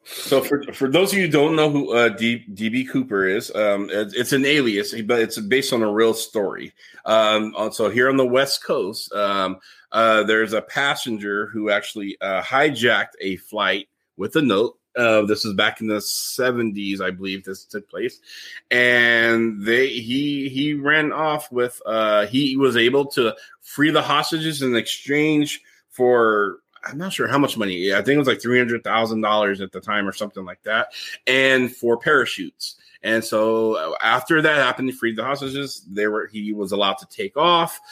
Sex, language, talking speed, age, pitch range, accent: male, English, 190 wpm, 30-49, 110-140 Hz, American